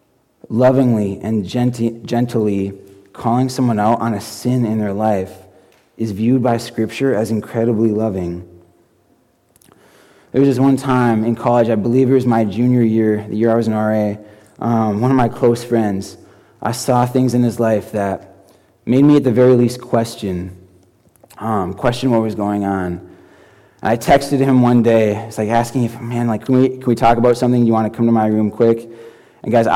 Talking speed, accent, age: 190 wpm, American, 20-39